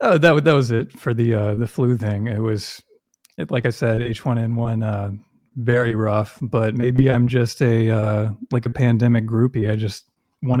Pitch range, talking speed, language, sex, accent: 110-130 Hz, 210 wpm, English, male, American